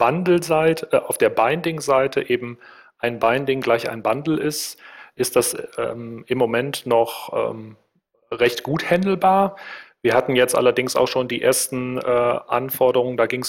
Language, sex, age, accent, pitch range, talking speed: German, male, 40-59, German, 115-140 Hz, 145 wpm